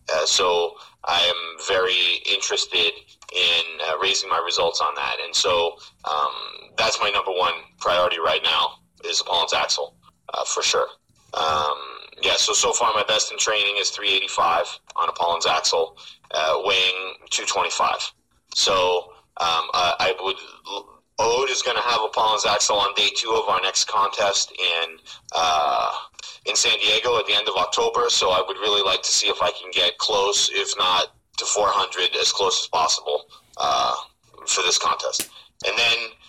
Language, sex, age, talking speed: English, male, 30-49, 180 wpm